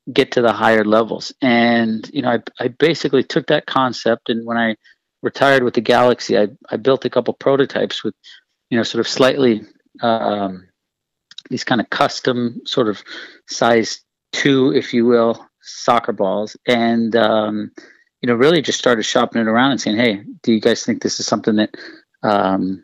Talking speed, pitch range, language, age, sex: 180 wpm, 110-125 Hz, English, 40-59, male